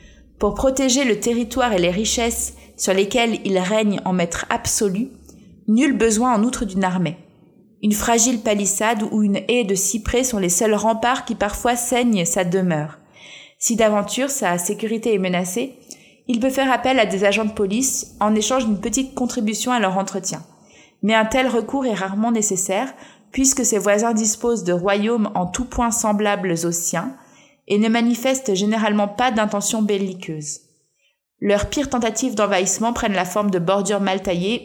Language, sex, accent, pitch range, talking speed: French, female, French, 190-235 Hz, 170 wpm